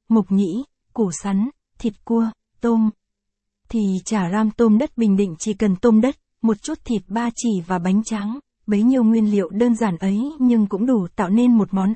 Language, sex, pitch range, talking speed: Vietnamese, female, 200-235 Hz, 200 wpm